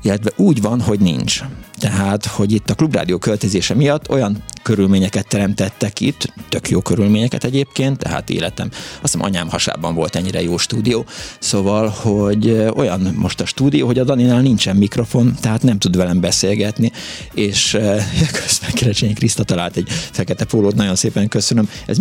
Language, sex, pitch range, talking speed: Hungarian, male, 100-120 Hz, 160 wpm